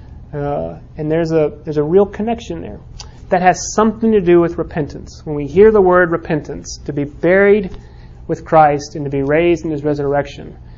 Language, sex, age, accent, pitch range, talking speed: English, male, 30-49, American, 135-170 Hz, 190 wpm